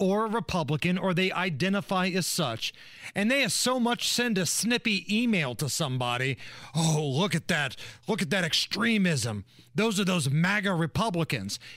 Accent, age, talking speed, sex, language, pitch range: American, 40-59, 160 wpm, male, English, 145-220 Hz